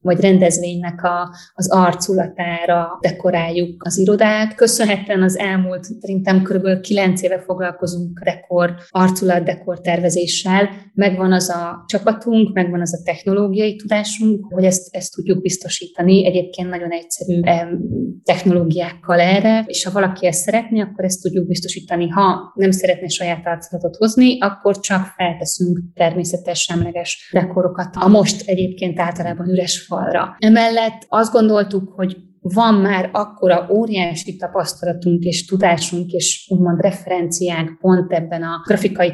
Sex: female